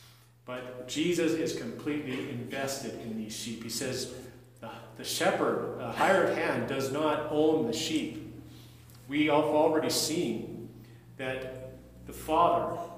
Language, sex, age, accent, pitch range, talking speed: English, male, 40-59, American, 120-155 Hz, 125 wpm